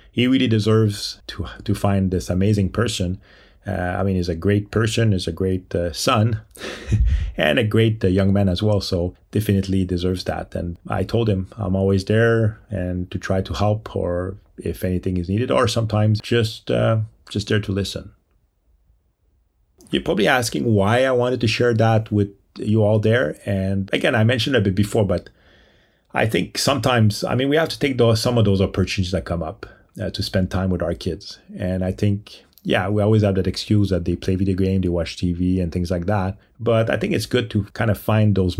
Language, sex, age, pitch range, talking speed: English, male, 30-49, 90-110 Hz, 210 wpm